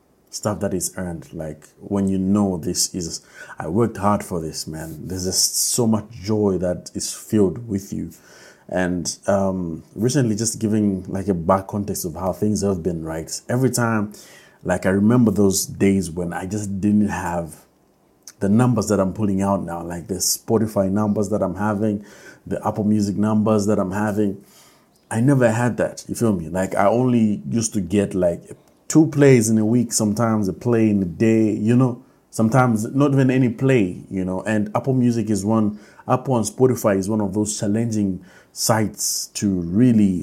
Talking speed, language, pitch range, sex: 185 wpm, English, 95-115 Hz, male